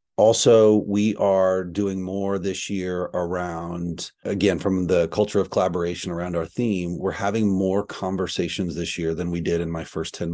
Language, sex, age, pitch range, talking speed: English, male, 30-49, 85-100 Hz, 175 wpm